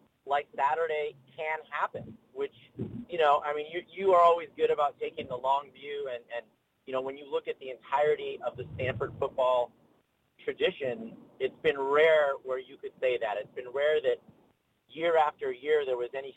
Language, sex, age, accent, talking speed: English, male, 30-49, American, 190 wpm